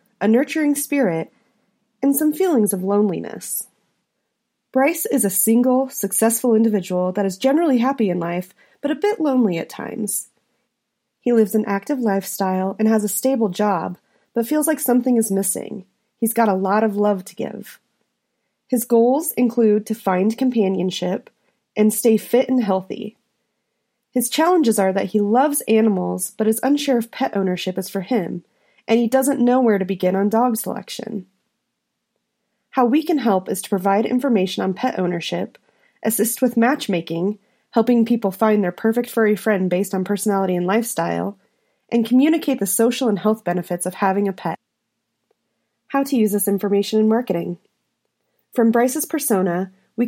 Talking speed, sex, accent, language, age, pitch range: 160 wpm, female, American, English, 30-49, 195-245 Hz